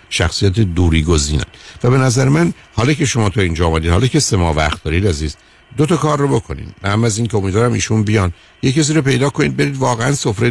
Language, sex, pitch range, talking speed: Persian, male, 90-115 Hz, 215 wpm